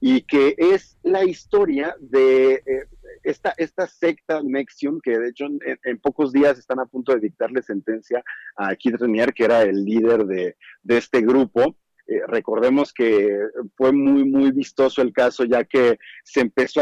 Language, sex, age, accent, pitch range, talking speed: Spanish, male, 40-59, Mexican, 115-155 Hz, 170 wpm